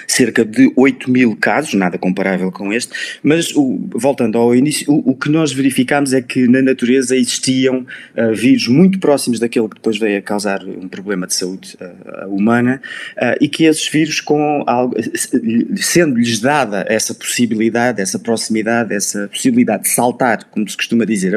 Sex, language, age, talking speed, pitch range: male, Portuguese, 20-39, 170 wpm, 115-150 Hz